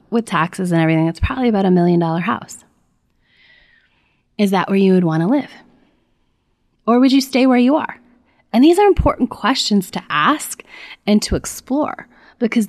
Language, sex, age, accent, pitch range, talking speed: English, female, 20-39, American, 165-230 Hz, 170 wpm